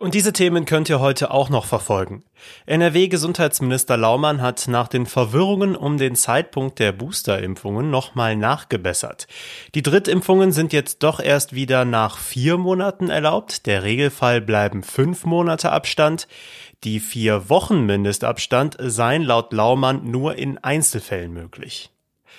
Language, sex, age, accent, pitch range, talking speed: German, male, 30-49, German, 120-155 Hz, 135 wpm